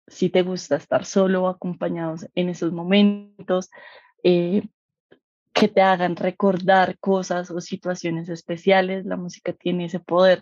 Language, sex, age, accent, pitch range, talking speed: English, female, 20-39, Colombian, 180-205 Hz, 140 wpm